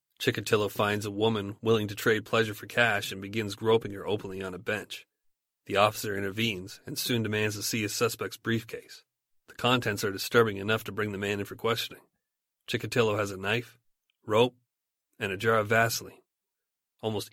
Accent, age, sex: American, 30-49, male